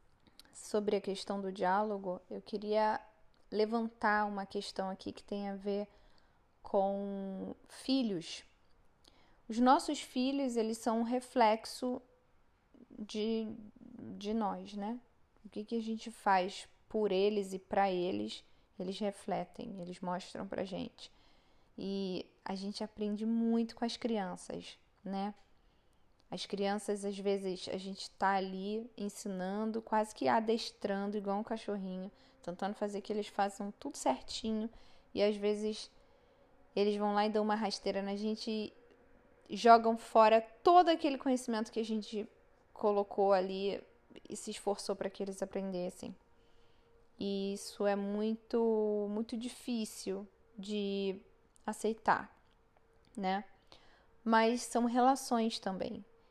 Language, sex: Portuguese, female